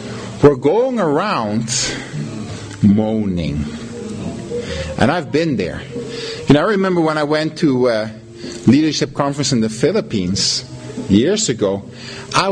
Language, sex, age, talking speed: English, male, 50-69, 125 wpm